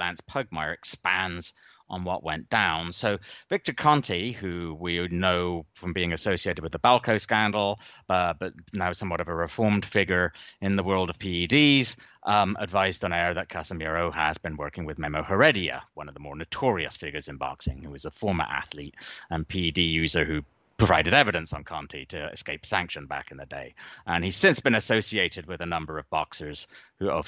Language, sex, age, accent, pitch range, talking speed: English, male, 30-49, British, 85-115 Hz, 185 wpm